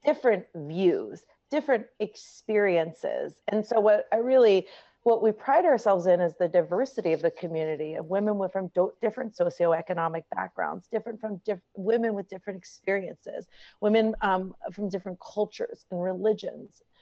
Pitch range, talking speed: 175-210 Hz, 140 wpm